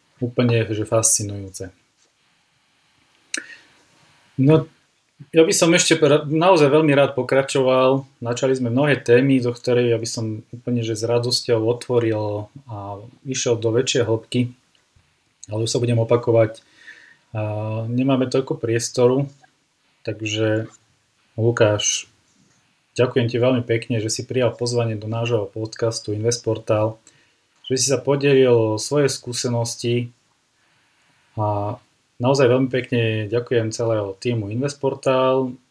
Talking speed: 115 wpm